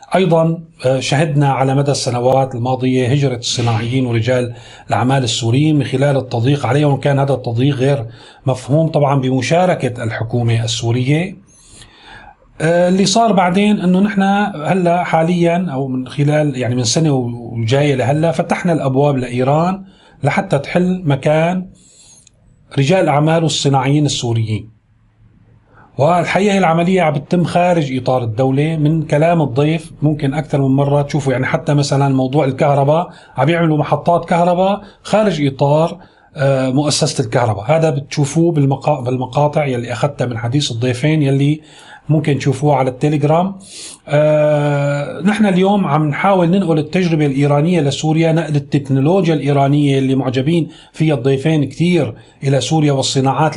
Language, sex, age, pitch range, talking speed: Arabic, male, 30-49, 130-165 Hz, 120 wpm